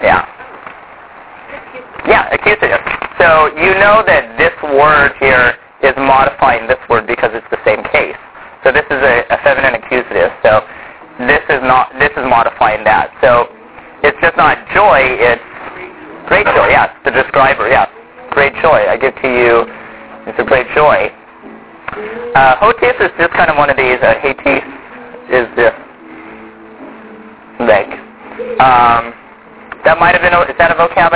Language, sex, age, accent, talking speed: English, male, 30-49, American, 150 wpm